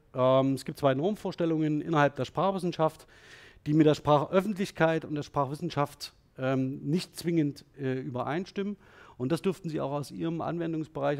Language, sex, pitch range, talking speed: German, male, 130-160 Hz, 135 wpm